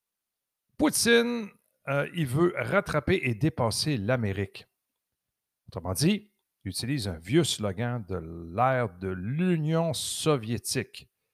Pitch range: 110-170 Hz